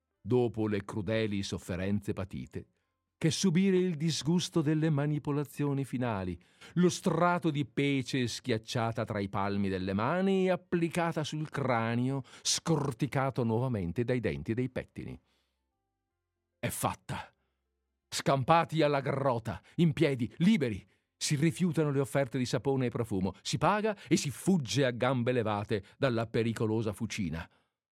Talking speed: 125 wpm